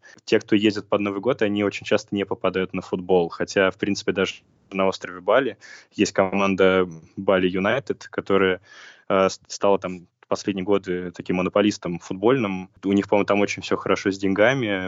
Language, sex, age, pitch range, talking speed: Russian, male, 20-39, 95-100 Hz, 170 wpm